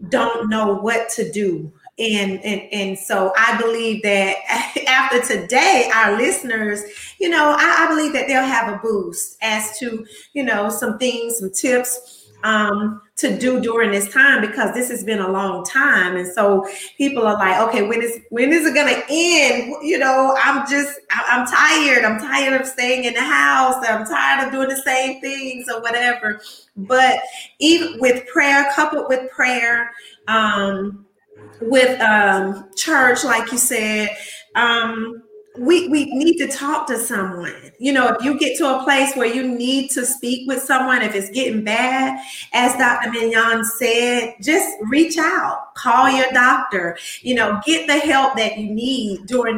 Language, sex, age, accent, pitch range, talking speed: English, female, 30-49, American, 220-270 Hz, 170 wpm